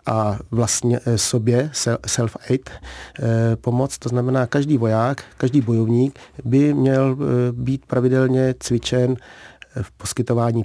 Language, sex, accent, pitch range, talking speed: Czech, male, native, 110-130 Hz, 100 wpm